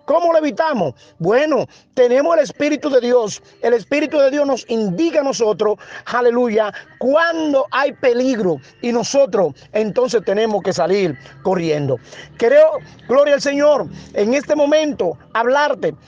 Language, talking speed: Spanish, 135 wpm